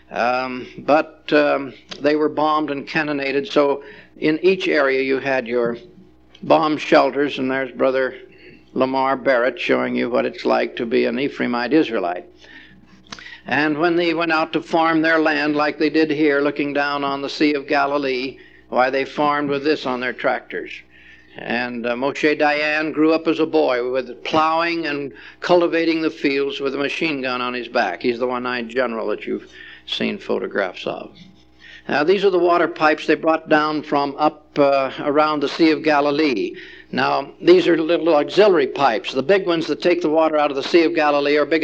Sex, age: male, 60-79